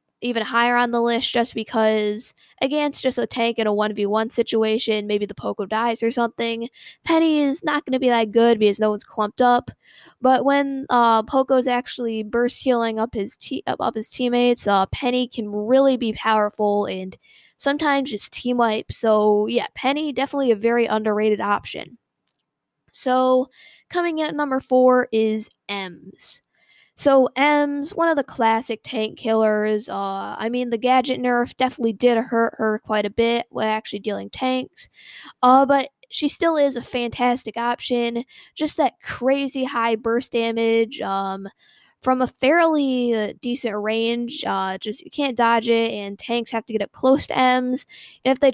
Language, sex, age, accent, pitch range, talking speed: English, female, 10-29, American, 220-260 Hz, 170 wpm